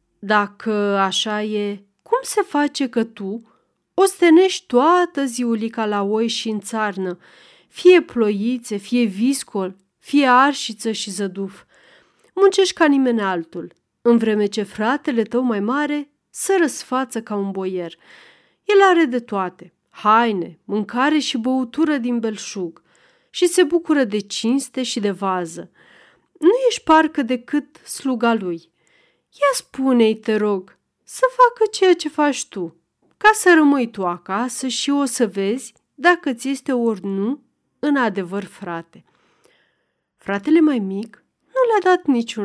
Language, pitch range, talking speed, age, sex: Romanian, 200-295 Hz, 140 wpm, 30-49, female